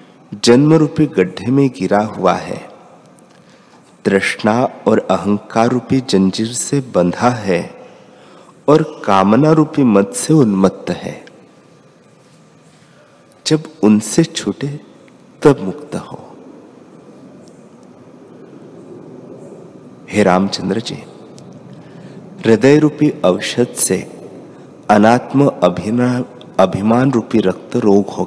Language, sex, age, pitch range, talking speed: Hindi, male, 50-69, 95-135 Hz, 85 wpm